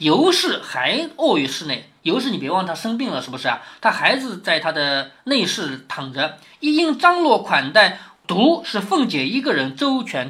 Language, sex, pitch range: Chinese, male, 205-320 Hz